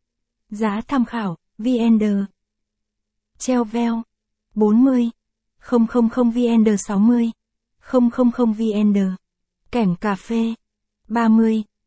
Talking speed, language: 80 wpm, Vietnamese